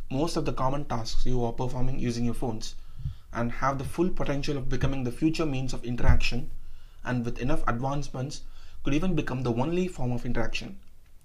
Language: English